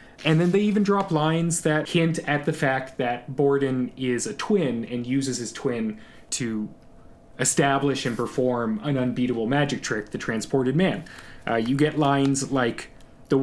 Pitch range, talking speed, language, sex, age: 125-150 Hz, 165 wpm, English, male, 20-39